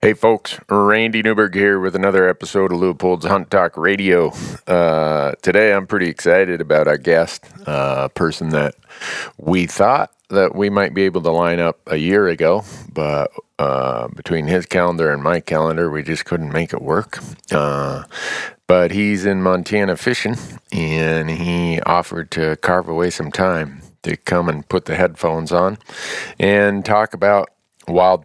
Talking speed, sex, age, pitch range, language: 160 wpm, male, 40-59, 80-95 Hz, English